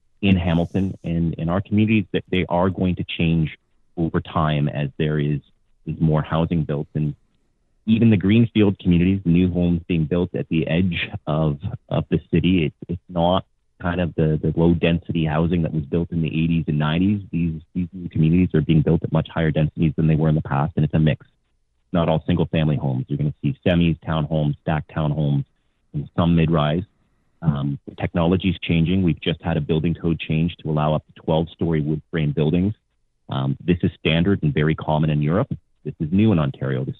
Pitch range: 75-90 Hz